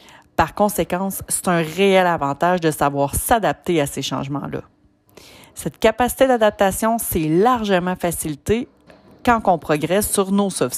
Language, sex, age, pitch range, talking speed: French, female, 30-49, 165-225 Hz, 135 wpm